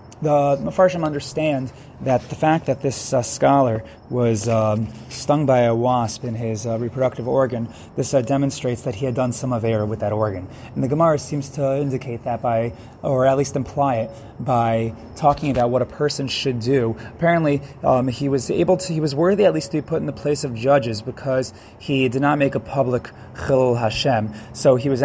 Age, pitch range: 20-39, 120-145 Hz